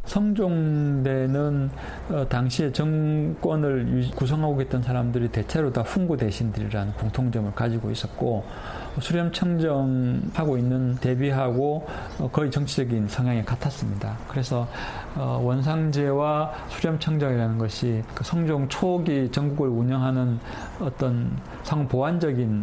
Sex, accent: male, native